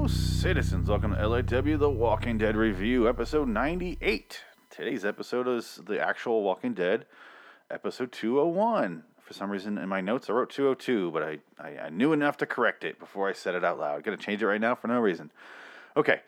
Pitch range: 90-115 Hz